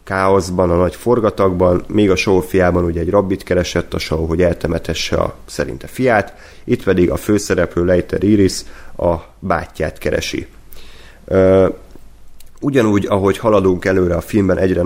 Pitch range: 90-100 Hz